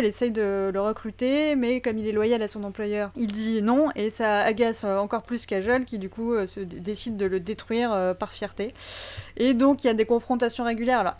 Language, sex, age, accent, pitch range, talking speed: French, female, 20-39, French, 205-245 Hz, 230 wpm